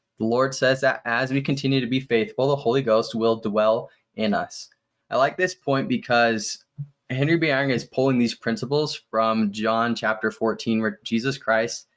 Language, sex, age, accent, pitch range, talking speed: English, male, 20-39, American, 110-135 Hz, 180 wpm